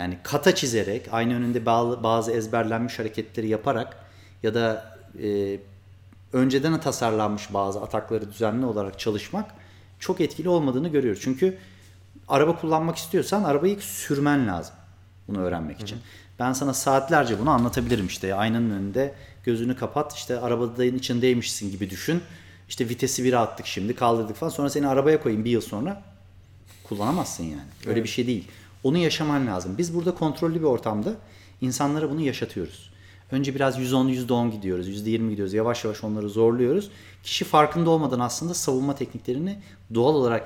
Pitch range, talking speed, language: 100-140 Hz, 145 wpm, Turkish